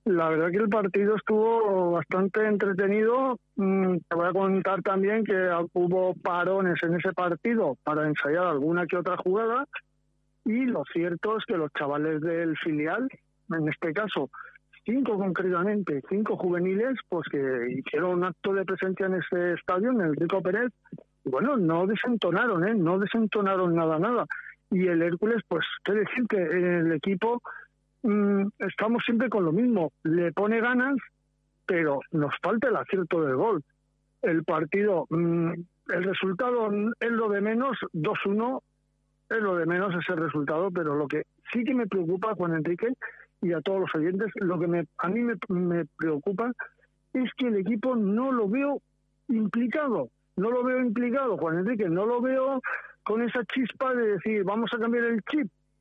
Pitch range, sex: 170-225 Hz, male